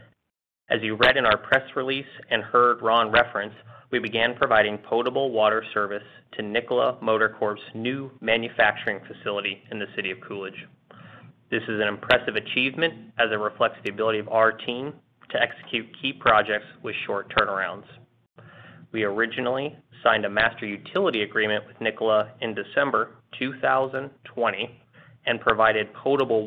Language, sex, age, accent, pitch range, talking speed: English, male, 20-39, American, 110-130 Hz, 145 wpm